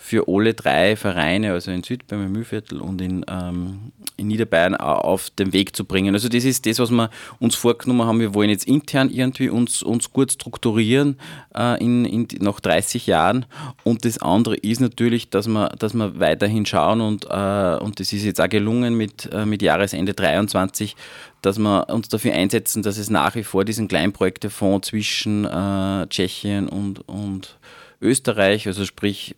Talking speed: 180 wpm